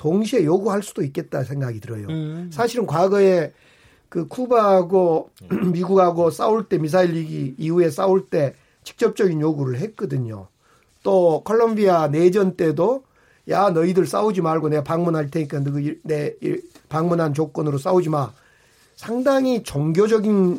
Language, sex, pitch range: Korean, male, 150-205 Hz